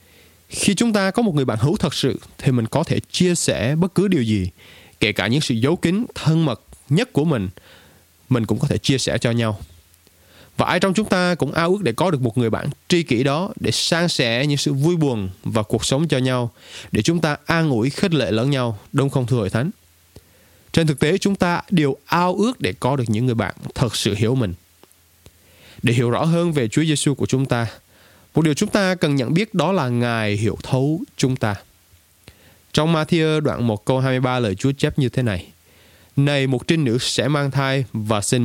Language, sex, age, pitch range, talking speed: Vietnamese, male, 20-39, 110-155 Hz, 225 wpm